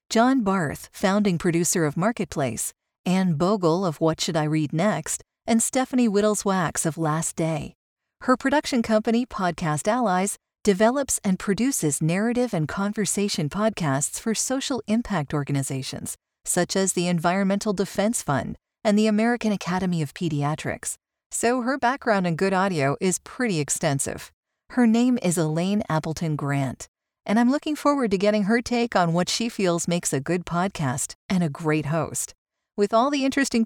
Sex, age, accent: female, 40-59, American